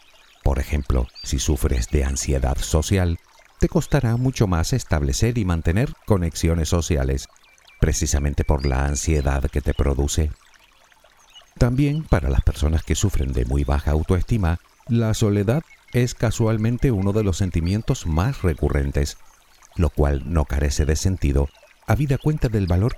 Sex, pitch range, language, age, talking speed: male, 70-105 Hz, Spanish, 50-69, 140 wpm